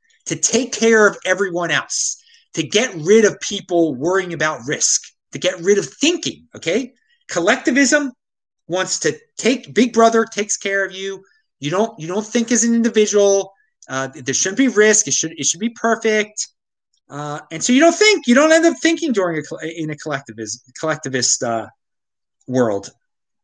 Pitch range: 160-250 Hz